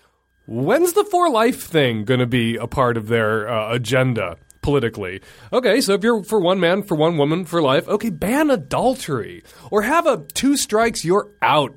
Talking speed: 190 wpm